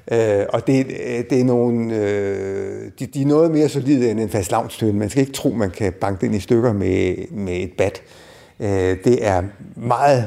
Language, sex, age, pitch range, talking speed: Danish, male, 60-79, 105-130 Hz, 210 wpm